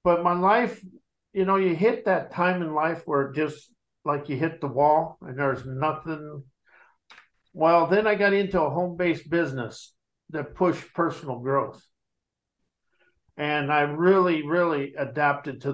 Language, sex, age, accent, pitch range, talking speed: English, male, 50-69, American, 145-185 Hz, 150 wpm